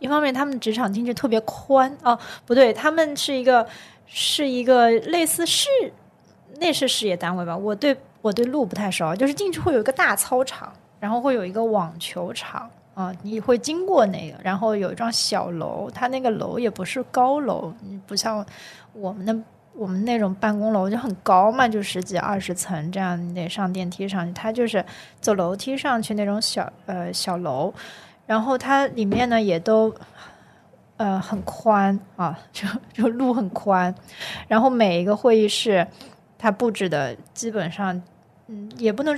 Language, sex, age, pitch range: Chinese, female, 20-39, 190-245 Hz